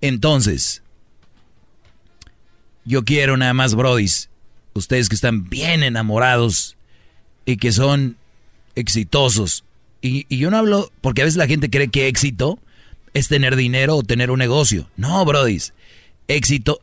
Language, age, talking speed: Spanish, 40-59, 135 wpm